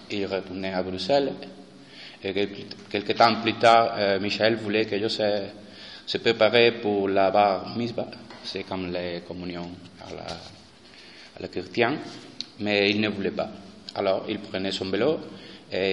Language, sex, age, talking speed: Spanish, male, 30-49, 150 wpm